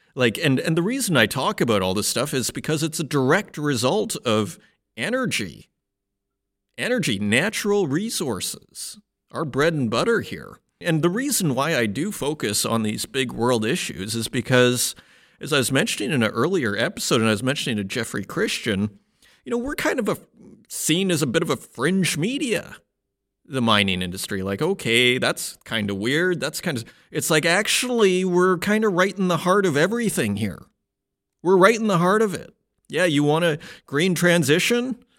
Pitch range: 125-195 Hz